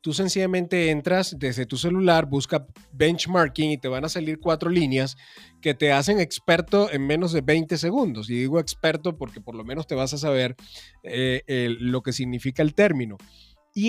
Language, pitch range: Spanish, 145-195 Hz